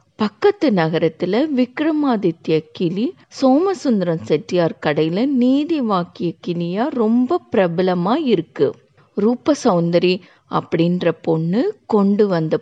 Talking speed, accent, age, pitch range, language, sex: 65 wpm, native, 50-69, 165-235 Hz, Tamil, female